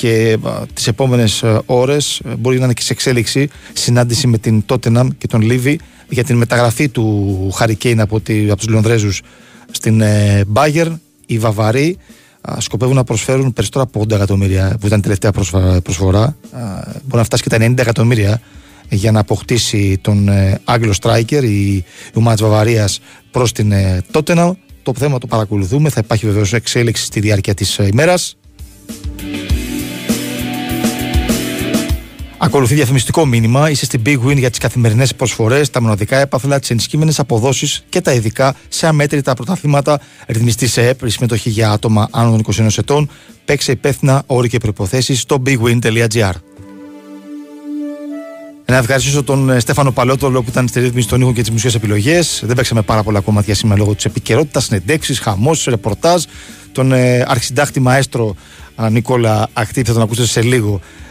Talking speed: 120 wpm